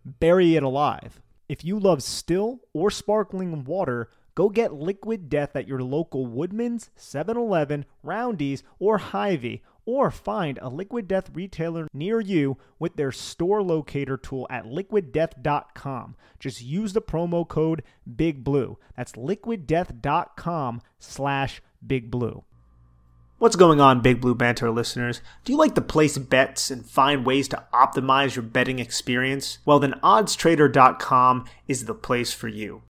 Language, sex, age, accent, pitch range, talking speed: English, male, 30-49, American, 130-170 Hz, 135 wpm